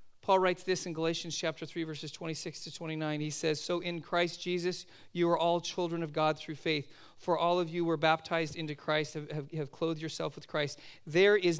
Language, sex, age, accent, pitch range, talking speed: English, male, 40-59, American, 145-175 Hz, 215 wpm